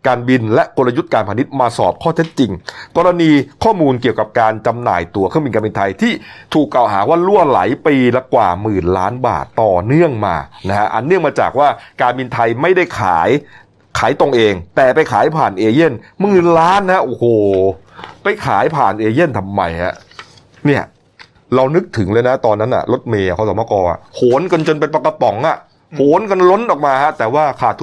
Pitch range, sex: 105-145 Hz, male